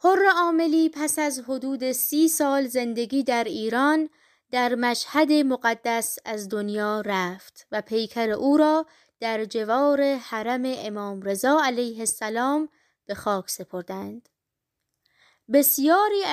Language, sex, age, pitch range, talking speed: Persian, female, 20-39, 210-275 Hz, 115 wpm